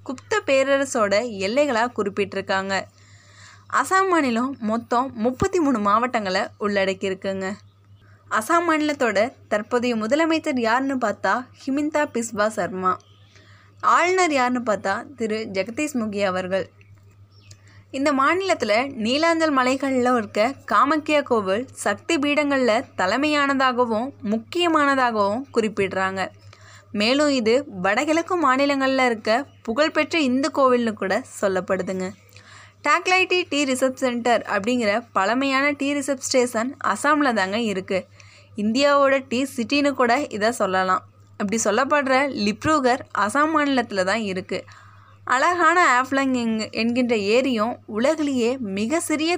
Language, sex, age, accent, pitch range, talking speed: Tamil, female, 20-39, native, 195-280 Hz, 100 wpm